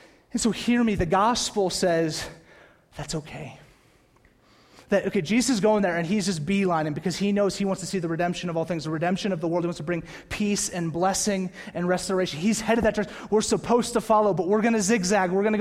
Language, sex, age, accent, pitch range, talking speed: English, male, 30-49, American, 165-205 Hz, 225 wpm